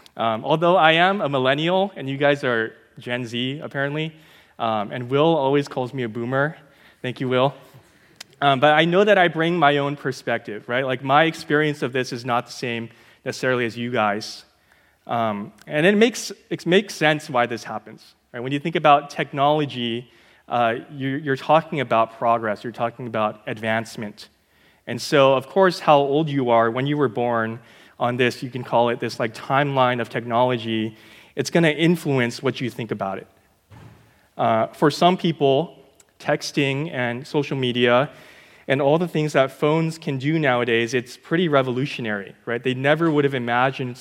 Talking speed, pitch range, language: 175 wpm, 120-150 Hz, English